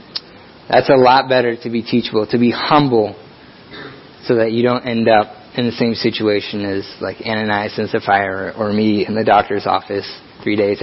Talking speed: 185 wpm